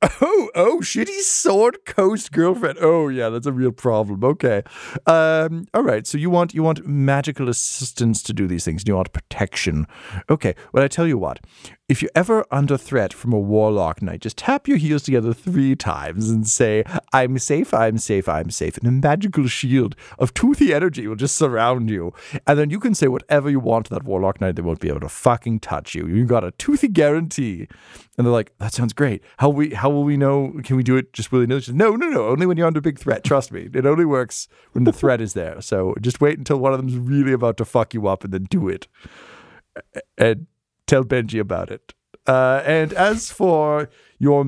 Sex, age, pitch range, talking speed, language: male, 40-59, 110-150 Hz, 215 wpm, English